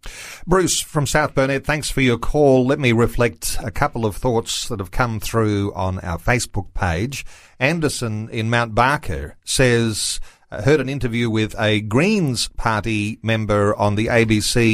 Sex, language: male, English